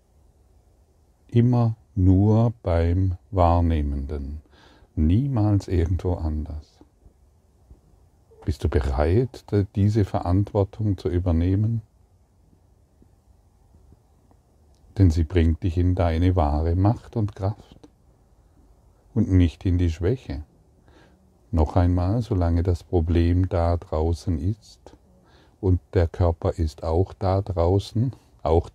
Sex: male